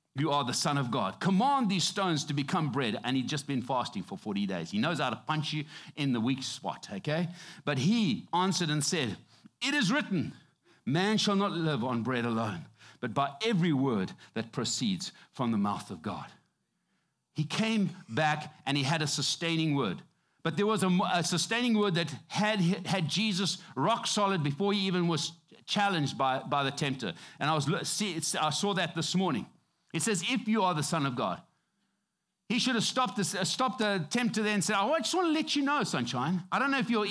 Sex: male